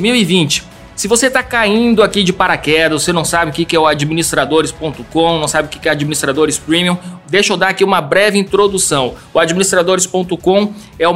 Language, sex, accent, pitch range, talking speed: Portuguese, male, Brazilian, 160-200 Hz, 180 wpm